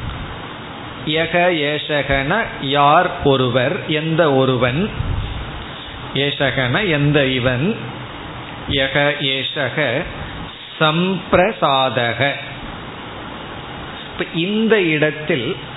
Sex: male